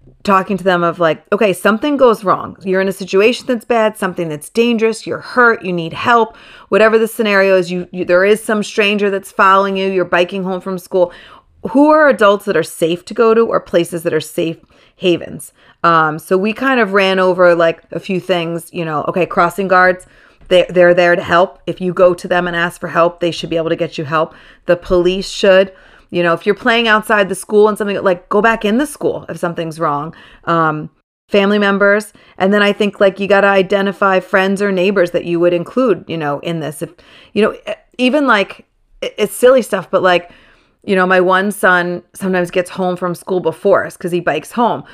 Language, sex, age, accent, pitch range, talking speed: English, female, 40-59, American, 175-205 Hz, 220 wpm